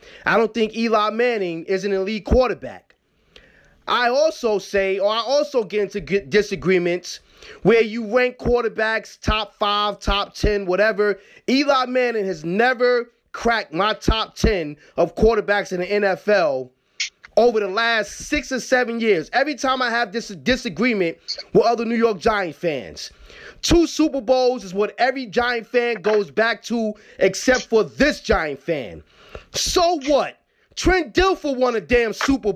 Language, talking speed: English, 155 wpm